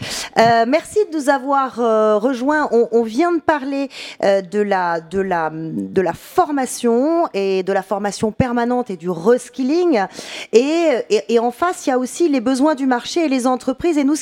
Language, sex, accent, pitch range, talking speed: French, female, French, 220-285 Hz, 195 wpm